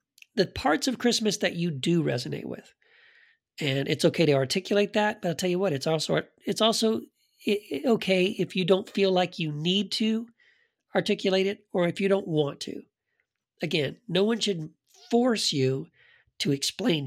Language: English